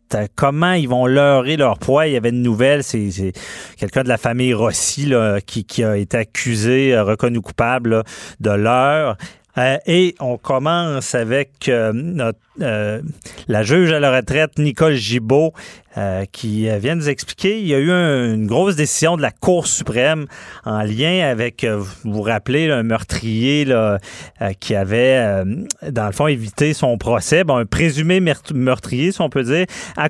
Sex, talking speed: male, 180 wpm